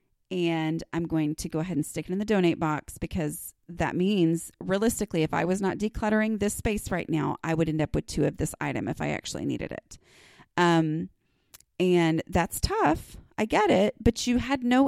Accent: American